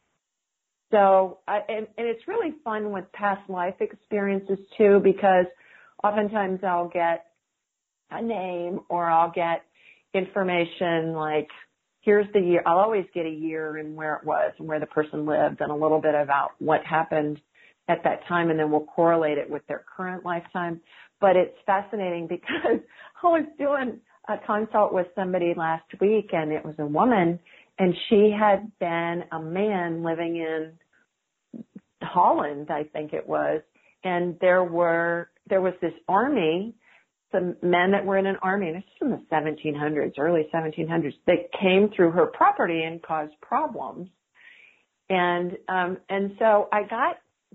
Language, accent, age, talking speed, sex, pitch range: English, American, 40-59, 160 wpm, female, 165-210 Hz